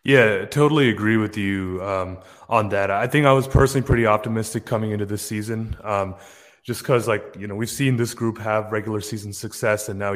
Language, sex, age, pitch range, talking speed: English, male, 30-49, 100-115 Hz, 205 wpm